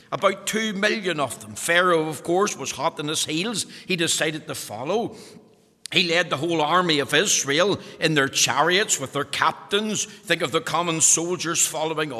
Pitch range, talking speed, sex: 140-190 Hz, 175 wpm, male